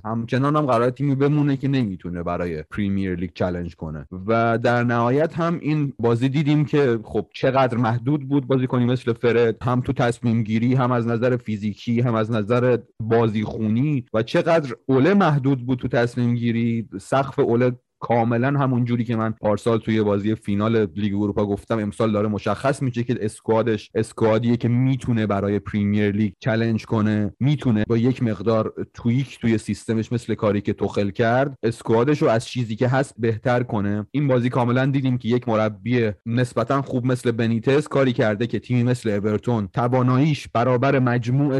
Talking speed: 170 wpm